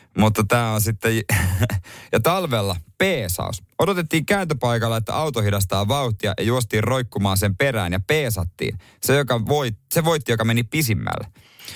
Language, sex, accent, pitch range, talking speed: Finnish, male, native, 105-150 Hz, 140 wpm